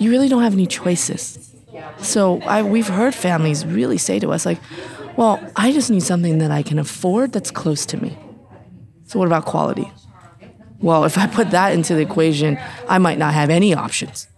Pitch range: 150-195 Hz